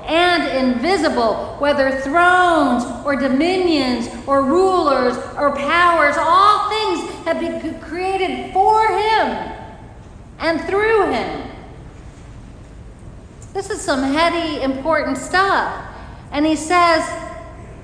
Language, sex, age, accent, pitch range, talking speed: English, female, 50-69, American, 270-350 Hz, 100 wpm